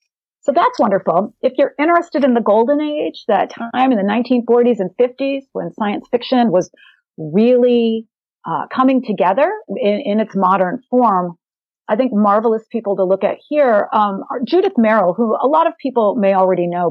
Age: 40-59